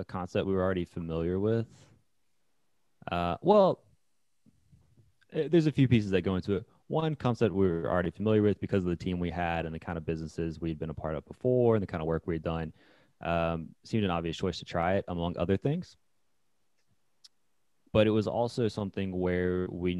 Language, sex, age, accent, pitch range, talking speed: English, male, 30-49, American, 85-100 Hz, 200 wpm